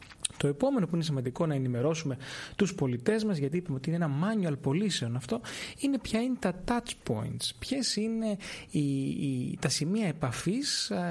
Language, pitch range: Greek, 140-195 Hz